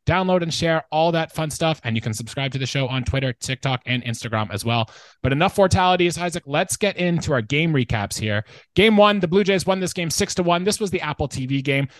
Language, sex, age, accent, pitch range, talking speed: English, male, 20-39, American, 120-175 Hz, 245 wpm